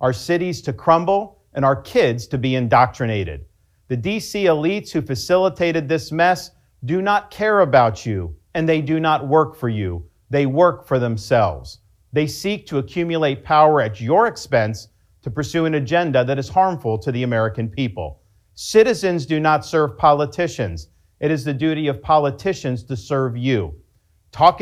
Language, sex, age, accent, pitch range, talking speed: English, male, 50-69, American, 110-160 Hz, 165 wpm